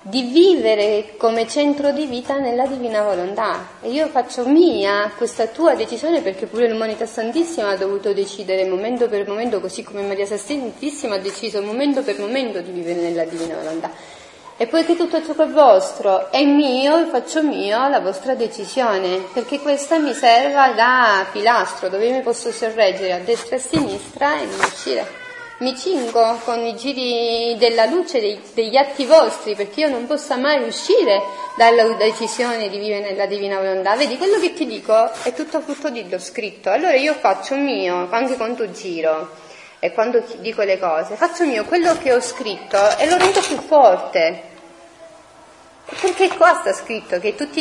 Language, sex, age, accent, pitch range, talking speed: Italian, female, 30-49, native, 220-310 Hz, 175 wpm